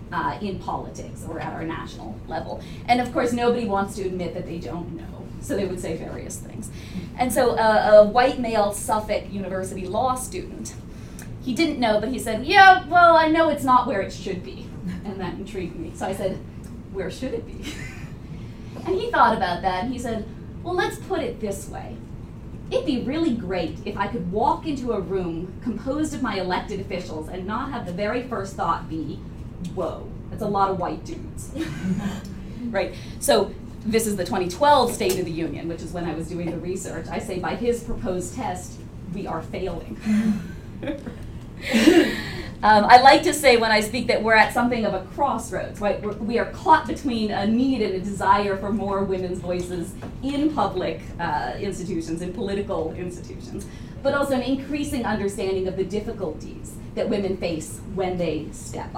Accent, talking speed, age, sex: American, 190 wpm, 30-49, female